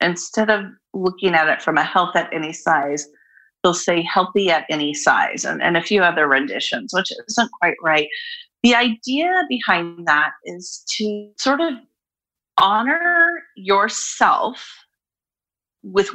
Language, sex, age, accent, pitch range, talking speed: English, female, 40-59, American, 180-260 Hz, 140 wpm